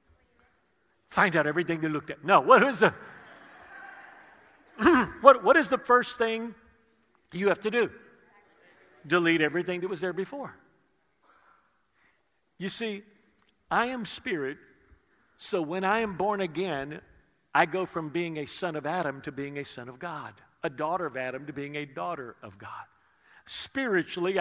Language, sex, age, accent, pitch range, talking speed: English, male, 50-69, American, 150-200 Hz, 145 wpm